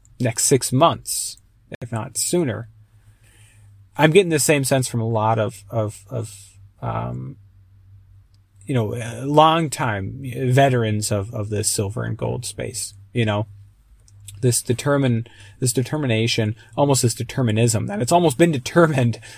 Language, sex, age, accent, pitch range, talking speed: English, male, 30-49, American, 105-130 Hz, 135 wpm